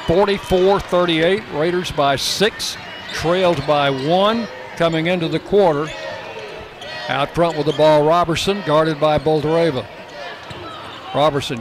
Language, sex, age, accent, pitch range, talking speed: English, male, 60-79, American, 160-190 Hz, 105 wpm